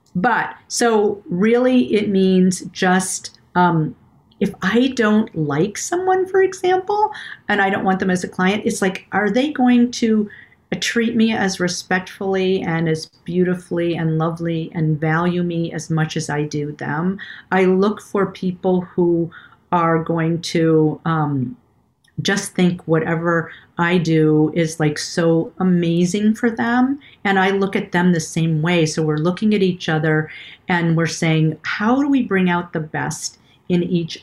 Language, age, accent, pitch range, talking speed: English, 50-69, American, 160-195 Hz, 160 wpm